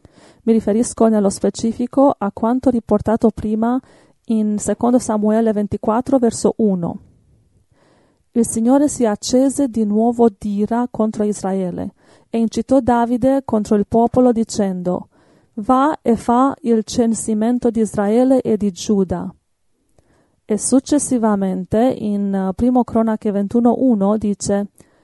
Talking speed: 115 wpm